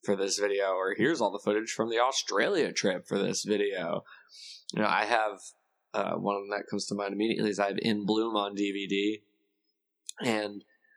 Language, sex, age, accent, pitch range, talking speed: English, male, 20-39, American, 100-110 Hz, 195 wpm